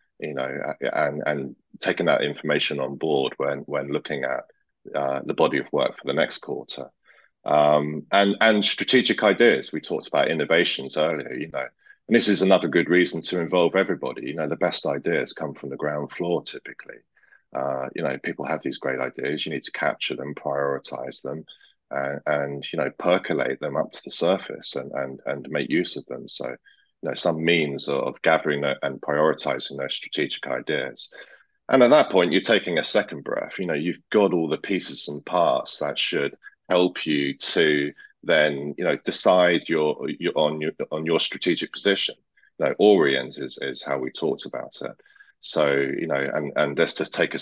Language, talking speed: English, 190 wpm